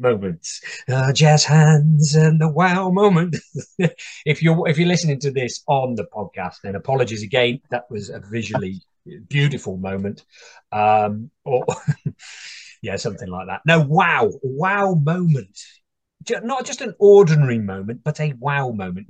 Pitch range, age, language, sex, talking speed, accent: 120-160 Hz, 30-49, English, male, 145 wpm, British